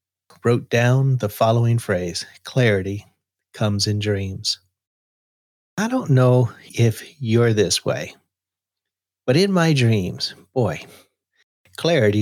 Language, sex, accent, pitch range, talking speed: English, male, American, 105-135 Hz, 110 wpm